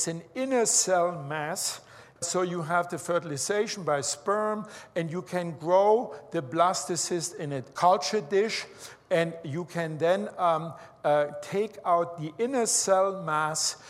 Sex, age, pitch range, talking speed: male, 60-79, 160-195 Hz, 145 wpm